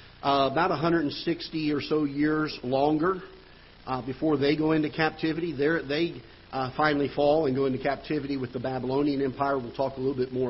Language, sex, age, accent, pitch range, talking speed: English, male, 50-69, American, 125-145 Hz, 175 wpm